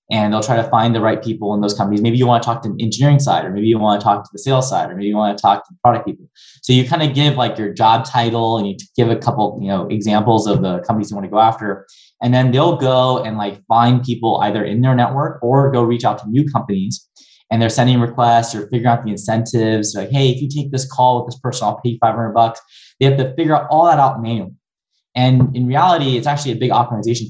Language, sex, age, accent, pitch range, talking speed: English, male, 20-39, American, 110-130 Hz, 275 wpm